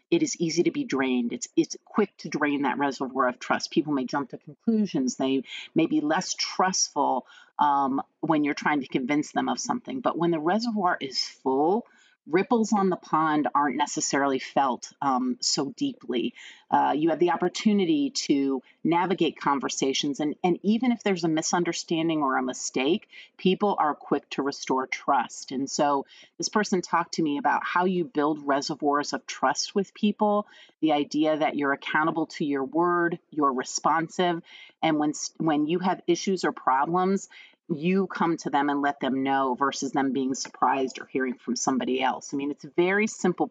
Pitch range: 145-195 Hz